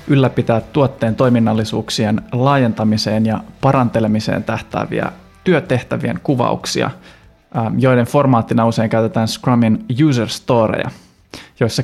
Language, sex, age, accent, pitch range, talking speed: Finnish, male, 20-39, native, 115-135 Hz, 85 wpm